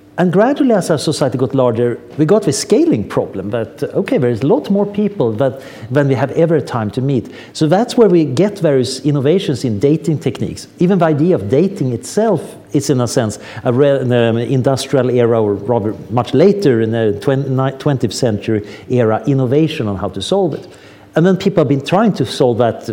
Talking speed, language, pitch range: 190 wpm, English, 120-165 Hz